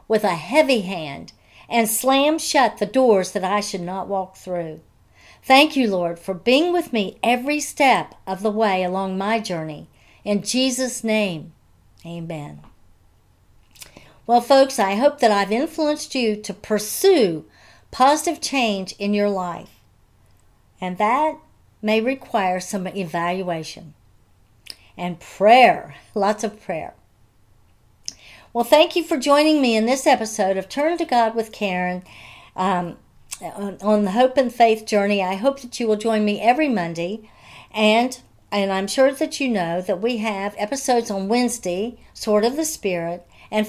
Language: English